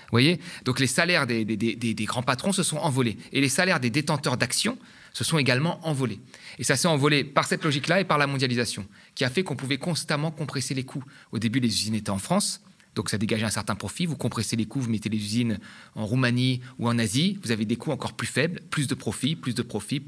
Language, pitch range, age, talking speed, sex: French, 115-160 Hz, 30-49, 250 wpm, male